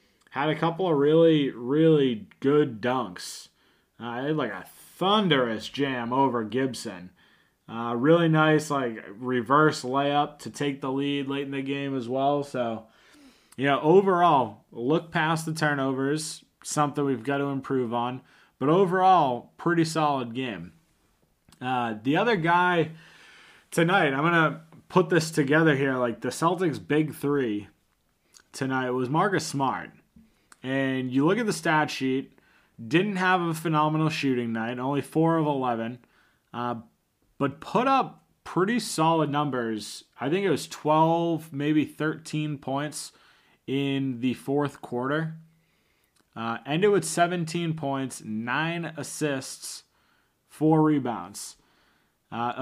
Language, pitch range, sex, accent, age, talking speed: English, 125-160 Hz, male, American, 20-39, 135 wpm